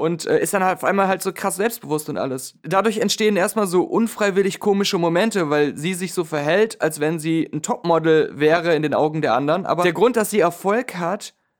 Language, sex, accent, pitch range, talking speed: German, male, German, 165-215 Hz, 220 wpm